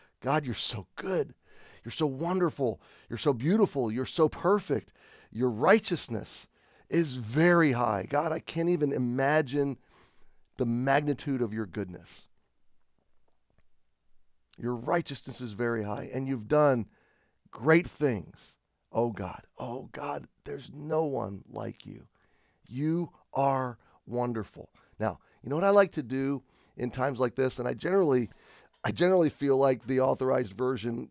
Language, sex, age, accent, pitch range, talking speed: English, male, 40-59, American, 110-140 Hz, 140 wpm